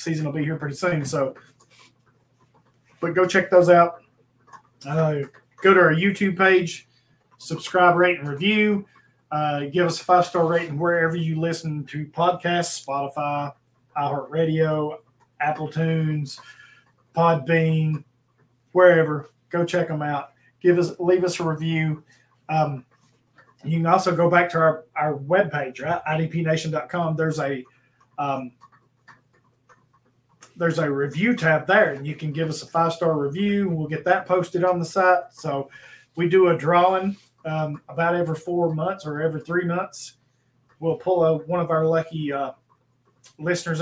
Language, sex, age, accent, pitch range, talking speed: English, male, 20-39, American, 140-175 Hz, 145 wpm